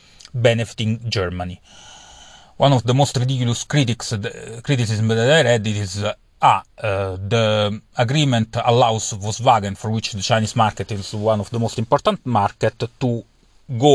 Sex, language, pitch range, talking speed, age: male, English, 100-120 Hz, 145 wpm, 30-49